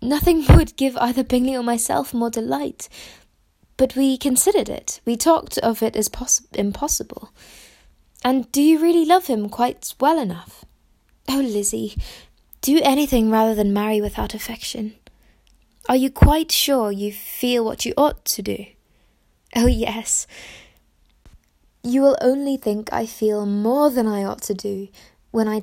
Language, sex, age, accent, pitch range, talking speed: English, female, 20-39, British, 215-260 Hz, 150 wpm